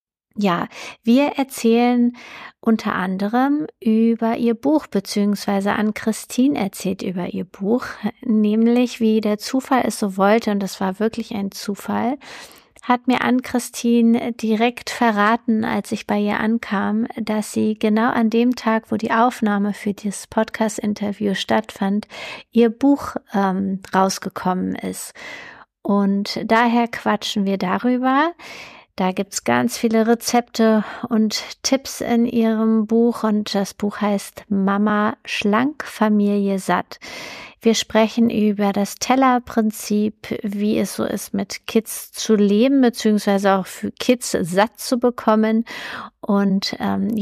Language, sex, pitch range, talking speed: German, female, 205-235 Hz, 125 wpm